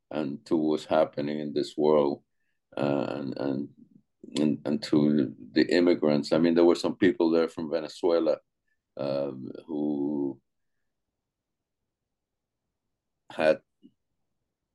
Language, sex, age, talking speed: English, male, 50-69, 105 wpm